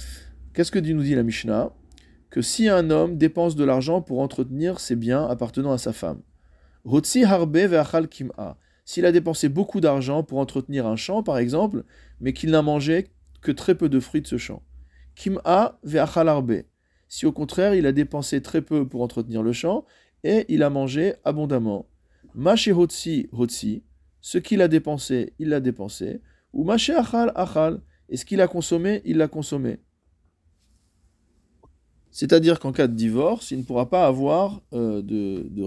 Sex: male